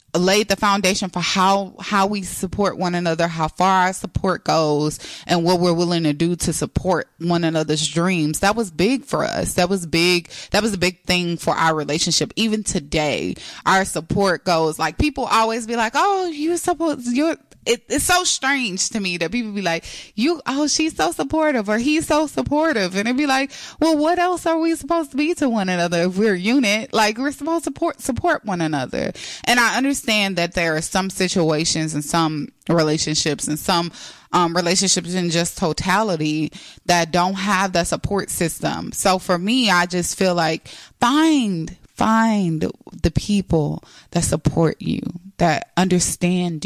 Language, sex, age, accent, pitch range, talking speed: English, female, 20-39, American, 170-225 Hz, 180 wpm